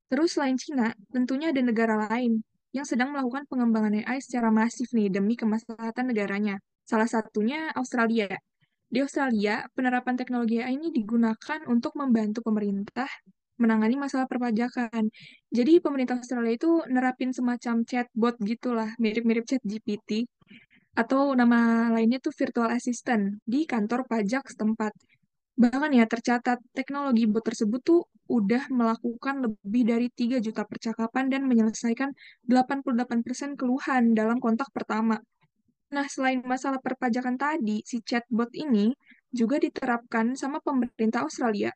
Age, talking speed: 10-29, 125 wpm